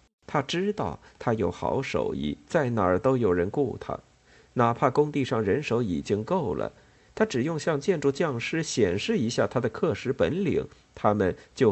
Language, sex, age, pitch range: Chinese, male, 50-69, 95-135 Hz